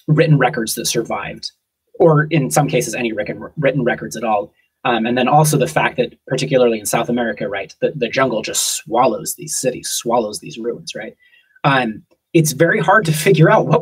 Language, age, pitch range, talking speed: English, 20-39, 125-165 Hz, 195 wpm